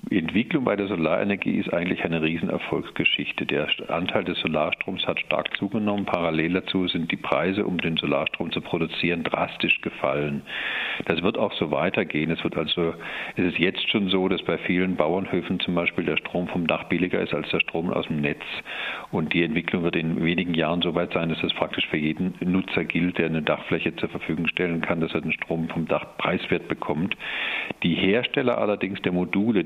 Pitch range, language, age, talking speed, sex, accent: 80-95 Hz, German, 50-69, 195 wpm, male, German